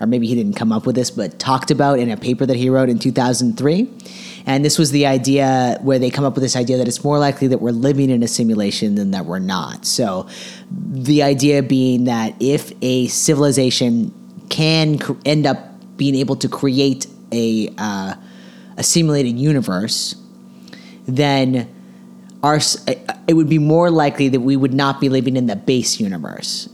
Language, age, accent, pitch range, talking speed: English, 30-49, American, 120-155 Hz, 185 wpm